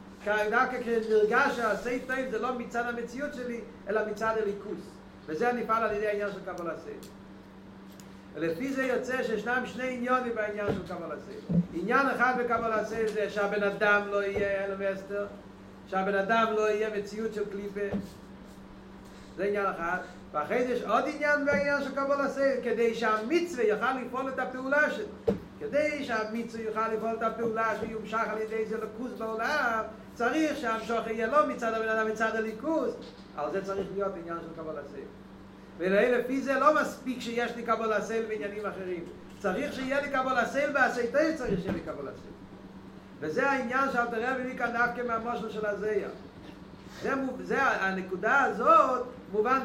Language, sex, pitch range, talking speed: Hebrew, male, 205-250 Hz, 100 wpm